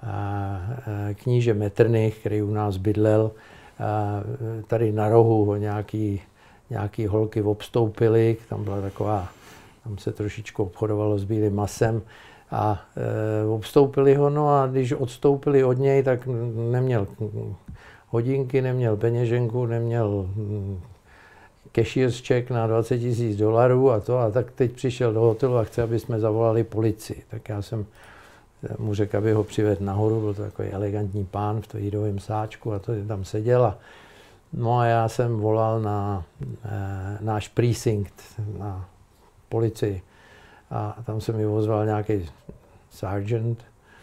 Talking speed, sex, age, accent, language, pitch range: 140 wpm, male, 50-69, native, Czech, 105-115 Hz